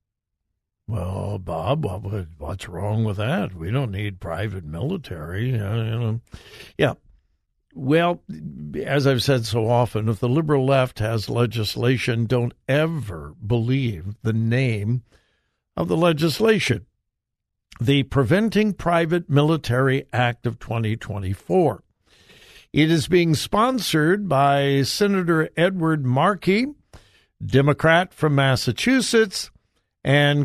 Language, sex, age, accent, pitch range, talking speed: English, male, 60-79, American, 115-170 Hz, 105 wpm